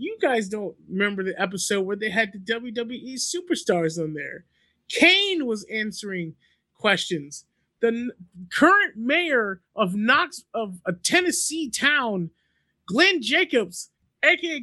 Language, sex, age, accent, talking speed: English, male, 30-49, American, 125 wpm